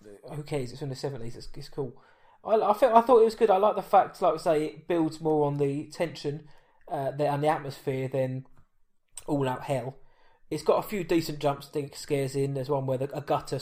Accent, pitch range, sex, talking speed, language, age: British, 135-165 Hz, male, 230 wpm, English, 20-39